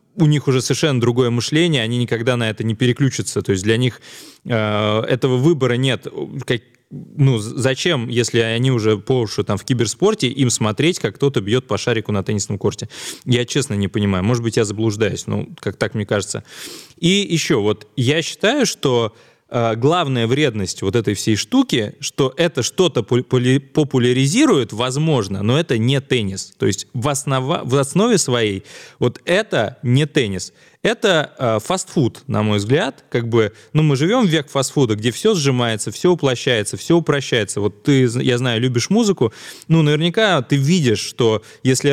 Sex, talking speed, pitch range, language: male, 165 wpm, 115-145 Hz, Russian